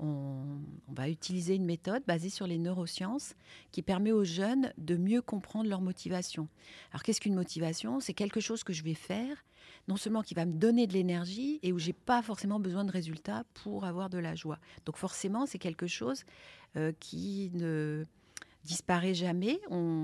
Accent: French